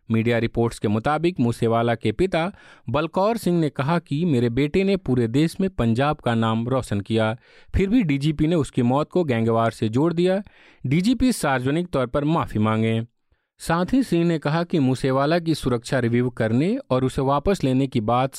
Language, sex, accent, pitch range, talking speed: Hindi, male, native, 120-165 Hz, 185 wpm